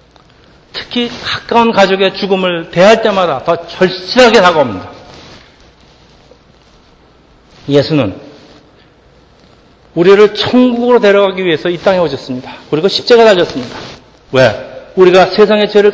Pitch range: 155-225 Hz